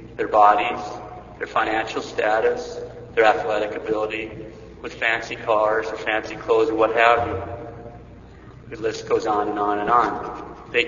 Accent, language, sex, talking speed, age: American, English, male, 150 wpm, 40-59